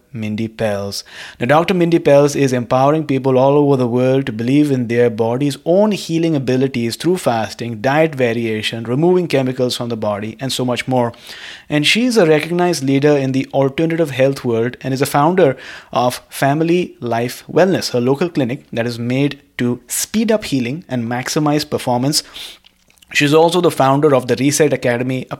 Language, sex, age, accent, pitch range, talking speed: English, male, 30-49, Indian, 120-155 Hz, 175 wpm